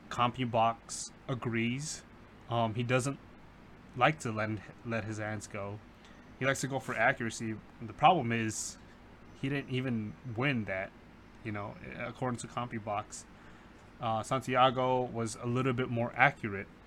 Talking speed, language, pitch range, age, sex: 140 wpm, English, 110-125 Hz, 20-39, male